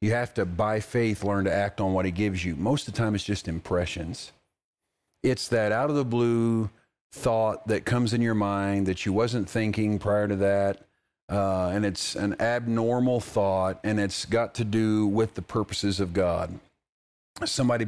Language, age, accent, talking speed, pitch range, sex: English, 40-59, American, 180 wpm, 100-115 Hz, male